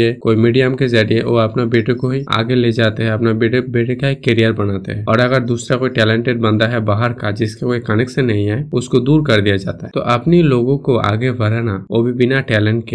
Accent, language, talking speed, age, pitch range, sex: native, Hindi, 215 wpm, 20-39, 110-130 Hz, male